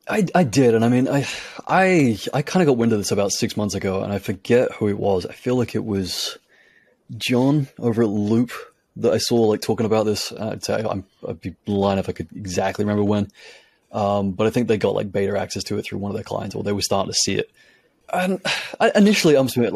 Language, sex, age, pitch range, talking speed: English, male, 20-39, 105-130 Hz, 240 wpm